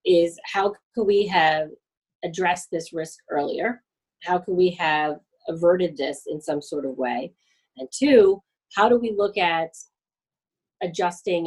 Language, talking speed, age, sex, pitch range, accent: English, 145 wpm, 30-49, female, 150-195 Hz, American